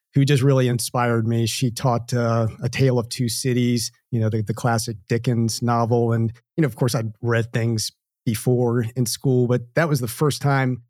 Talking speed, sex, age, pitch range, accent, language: 205 wpm, male, 40-59, 120-135 Hz, American, English